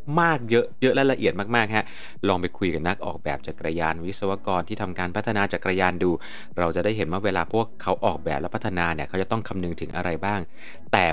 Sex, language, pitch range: male, Thai, 85-115 Hz